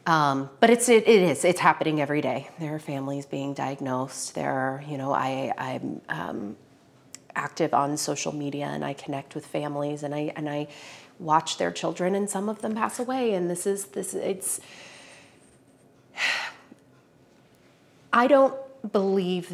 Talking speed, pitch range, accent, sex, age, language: 160 wpm, 135-165 Hz, American, female, 30-49, English